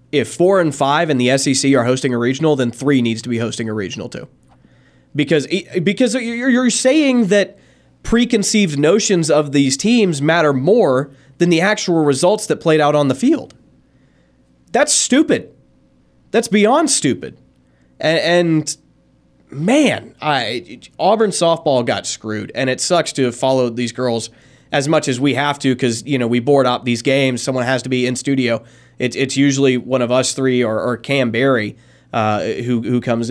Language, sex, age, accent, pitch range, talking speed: English, male, 20-39, American, 125-165 Hz, 175 wpm